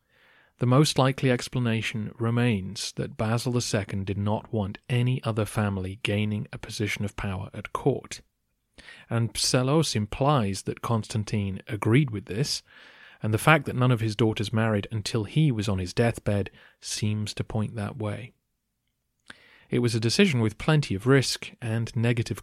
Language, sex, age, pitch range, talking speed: English, male, 30-49, 105-130 Hz, 160 wpm